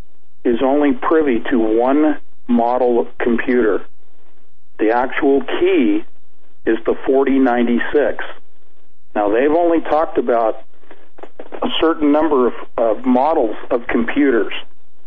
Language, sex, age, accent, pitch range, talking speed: English, male, 50-69, American, 120-150 Hz, 110 wpm